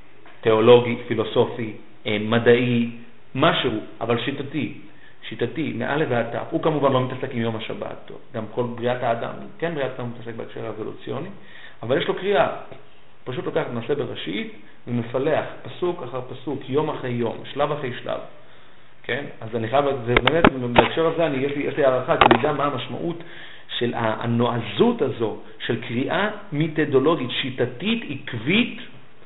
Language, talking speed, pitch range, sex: Hebrew, 135 wpm, 125-195 Hz, male